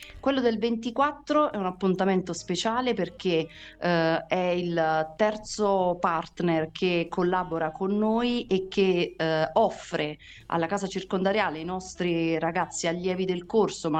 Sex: female